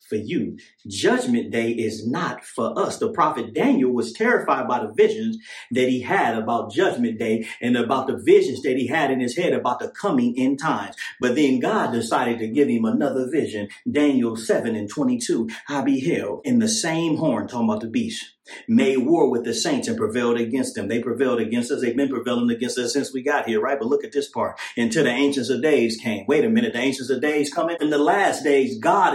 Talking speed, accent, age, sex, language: 220 wpm, American, 40-59, male, English